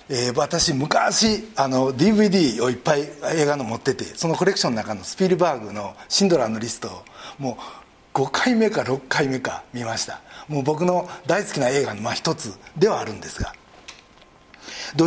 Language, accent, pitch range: Japanese, native, 135-215 Hz